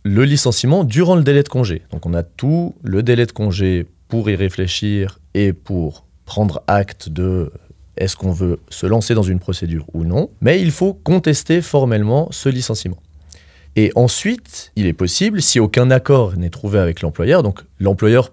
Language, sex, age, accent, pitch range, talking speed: French, male, 30-49, French, 90-130 Hz, 175 wpm